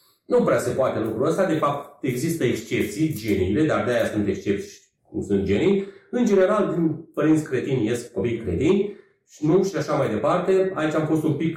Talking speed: 190 wpm